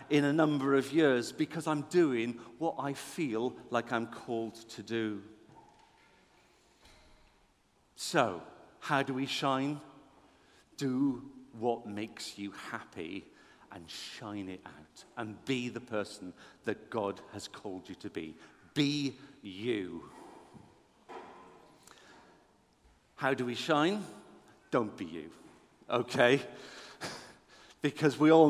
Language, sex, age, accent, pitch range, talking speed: English, male, 50-69, British, 105-135 Hz, 115 wpm